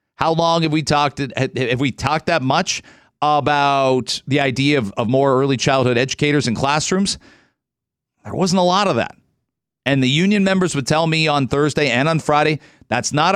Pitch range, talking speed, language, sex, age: 130-165 Hz, 185 wpm, English, male, 40-59